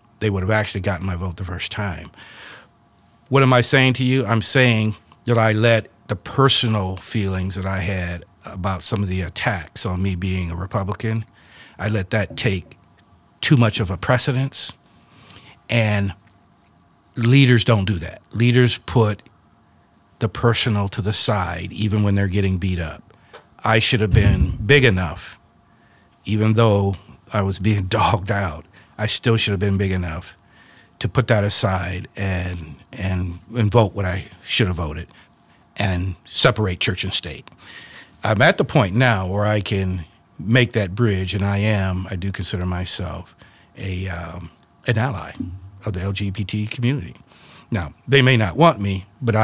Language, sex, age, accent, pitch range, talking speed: English, male, 50-69, American, 95-115 Hz, 165 wpm